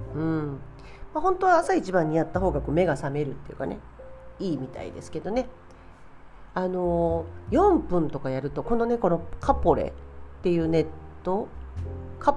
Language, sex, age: Japanese, female, 40-59